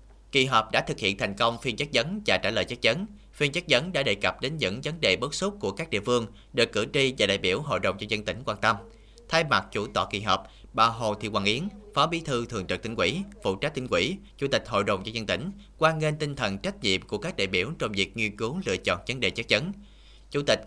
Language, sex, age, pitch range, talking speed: Vietnamese, male, 20-39, 105-165 Hz, 275 wpm